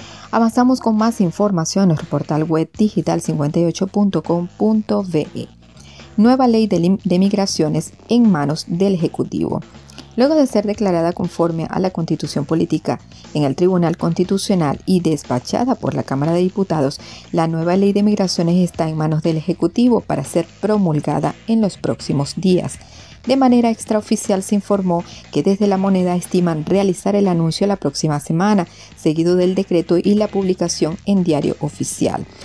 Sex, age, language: female, 40-59, Spanish